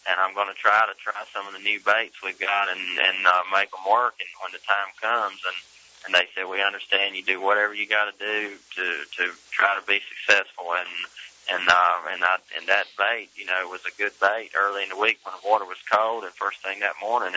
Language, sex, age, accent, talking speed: English, male, 20-39, American, 250 wpm